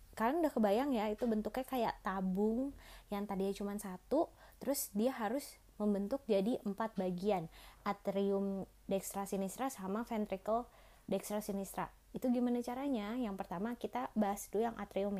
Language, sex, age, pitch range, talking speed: Indonesian, female, 20-39, 200-245 Hz, 140 wpm